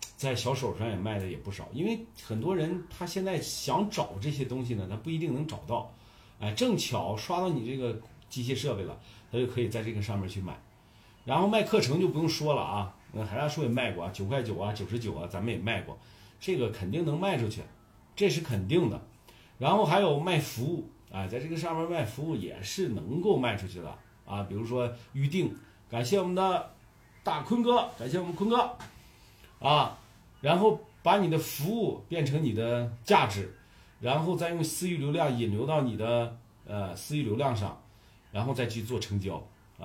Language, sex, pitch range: Chinese, male, 110-170 Hz